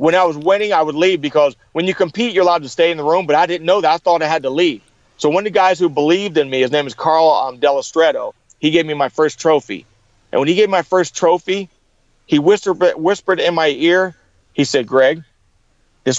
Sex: male